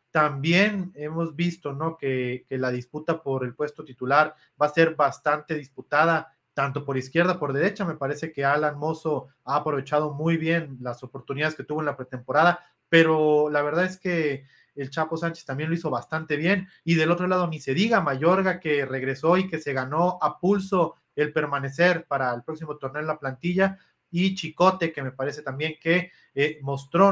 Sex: male